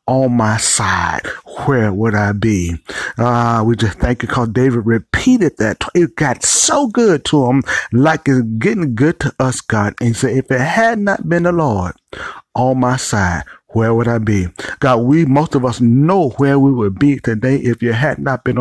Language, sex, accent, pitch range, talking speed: English, male, American, 115-145 Hz, 205 wpm